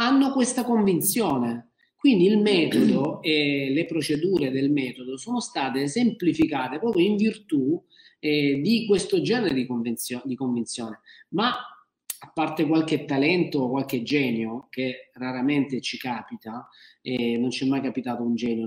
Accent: native